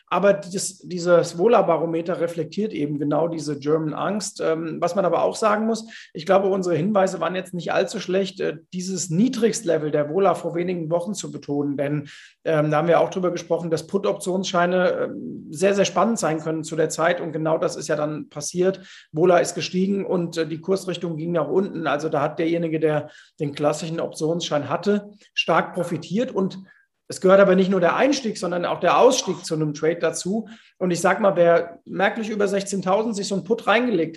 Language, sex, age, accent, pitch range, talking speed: German, male, 40-59, German, 160-200 Hz, 190 wpm